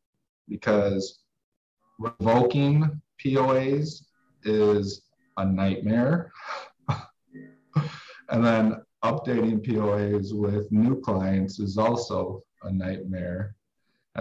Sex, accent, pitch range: male, American, 95-115 Hz